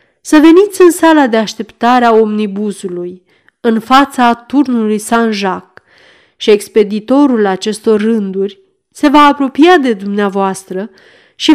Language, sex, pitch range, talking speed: Romanian, female, 200-285 Hz, 115 wpm